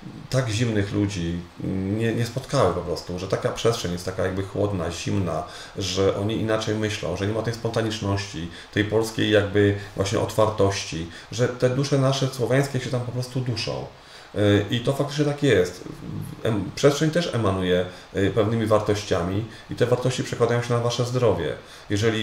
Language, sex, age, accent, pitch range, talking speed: English, male, 30-49, Polish, 95-125 Hz, 160 wpm